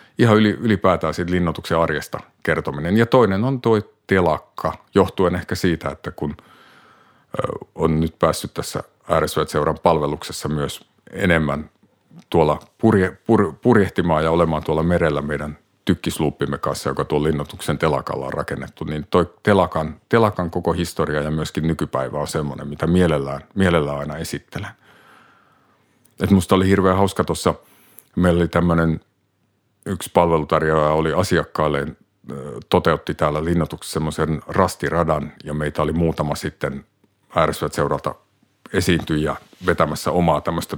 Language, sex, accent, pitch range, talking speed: Finnish, male, native, 75-90 Hz, 125 wpm